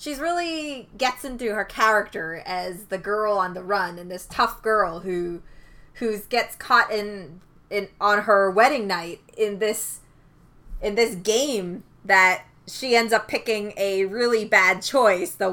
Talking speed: 160 wpm